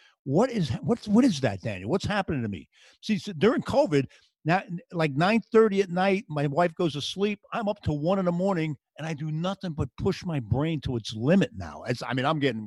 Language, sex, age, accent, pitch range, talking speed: English, male, 50-69, American, 130-170 Hz, 230 wpm